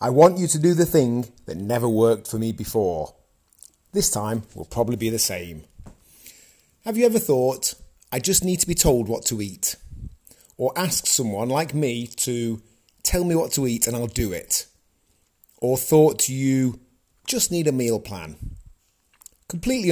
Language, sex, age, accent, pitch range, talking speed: English, male, 30-49, British, 95-140 Hz, 170 wpm